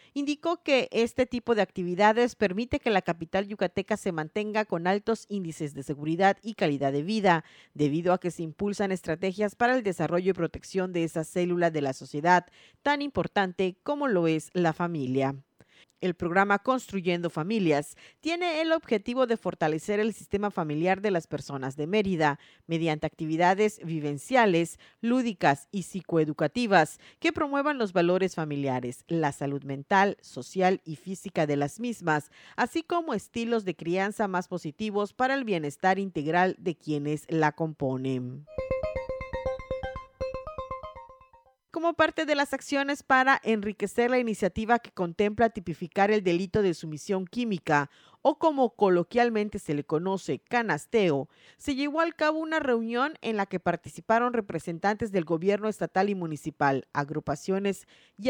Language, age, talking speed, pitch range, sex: Spanish, 40-59, 145 wpm, 160-235 Hz, female